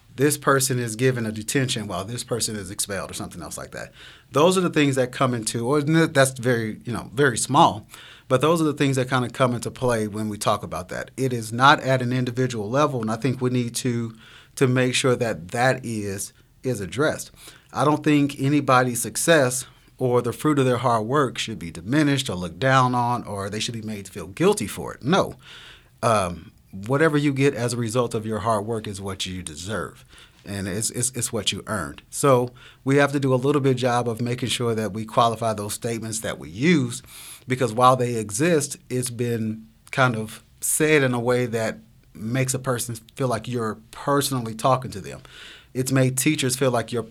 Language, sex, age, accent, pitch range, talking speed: English, male, 30-49, American, 110-130 Hz, 215 wpm